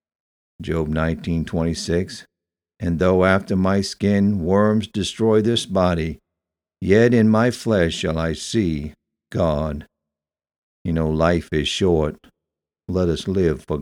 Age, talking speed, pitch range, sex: 60-79, 120 wpm, 80-100 Hz, male